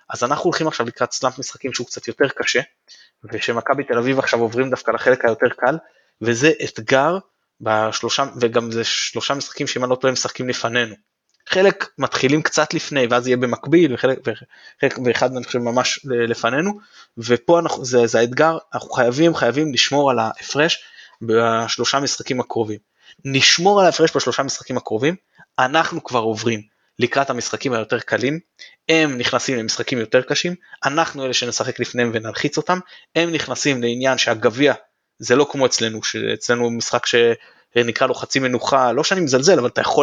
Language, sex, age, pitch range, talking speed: Hebrew, male, 20-39, 120-145 Hz, 155 wpm